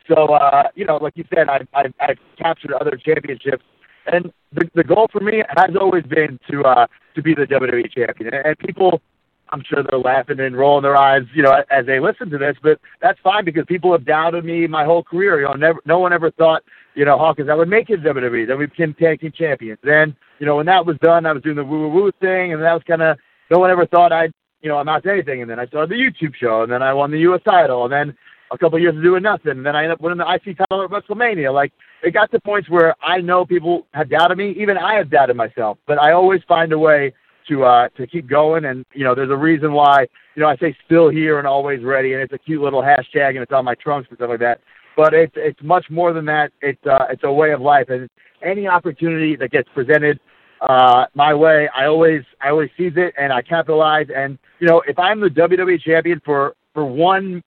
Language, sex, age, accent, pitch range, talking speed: English, male, 40-59, American, 140-175 Hz, 255 wpm